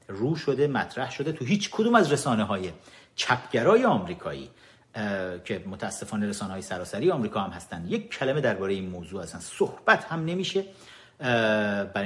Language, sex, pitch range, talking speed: Persian, male, 100-150 Hz, 150 wpm